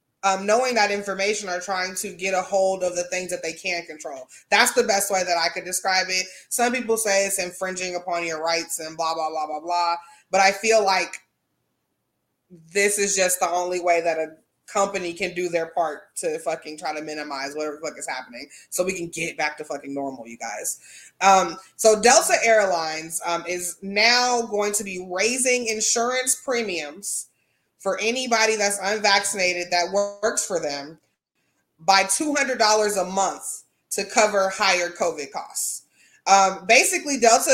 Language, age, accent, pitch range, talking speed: English, 20-39, American, 175-225 Hz, 175 wpm